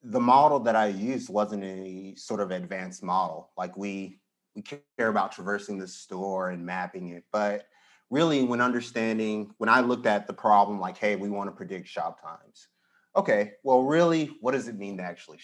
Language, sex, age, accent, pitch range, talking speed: English, male, 30-49, American, 100-125 Hz, 190 wpm